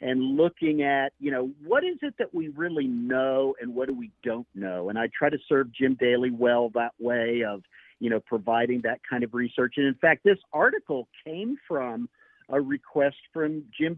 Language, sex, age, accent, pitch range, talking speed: English, male, 50-69, American, 135-200 Hz, 200 wpm